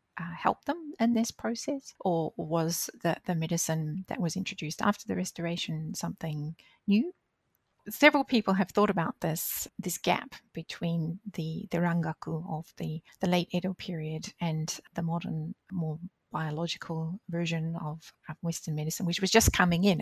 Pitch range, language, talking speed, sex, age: 165-205 Hz, English, 155 wpm, female, 30-49